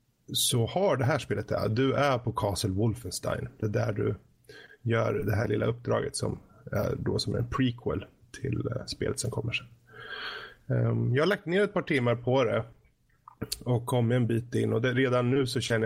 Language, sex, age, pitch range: Swedish, male, 20-39, 110-130 Hz